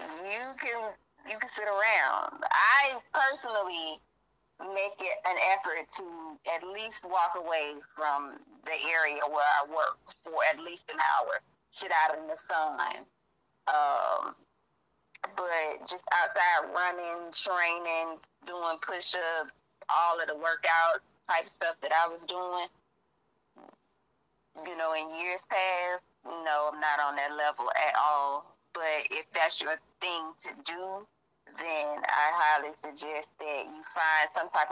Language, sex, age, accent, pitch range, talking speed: English, female, 30-49, American, 165-225 Hz, 140 wpm